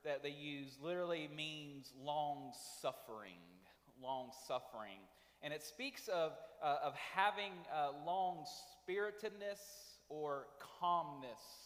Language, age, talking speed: English, 30-49, 100 wpm